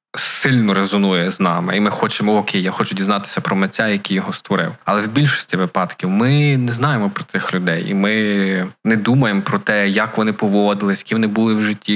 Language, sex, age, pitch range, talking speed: Ukrainian, male, 20-39, 100-130 Hz, 200 wpm